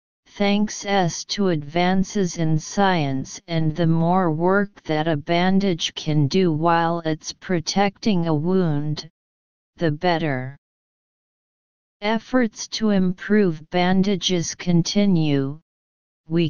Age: 40-59